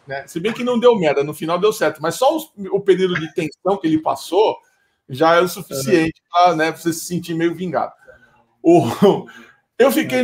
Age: 50-69